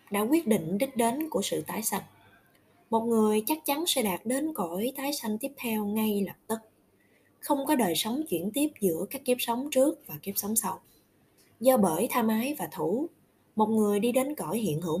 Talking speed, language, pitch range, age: 210 wpm, Vietnamese, 185-260 Hz, 20-39